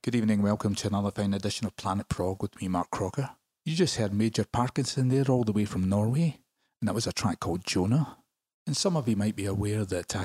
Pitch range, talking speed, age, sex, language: 100-120 Hz, 240 wpm, 30-49, male, English